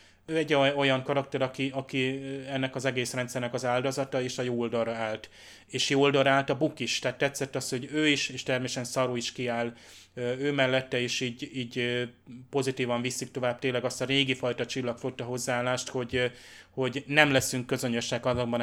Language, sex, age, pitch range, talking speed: Hungarian, male, 20-39, 120-135 Hz, 175 wpm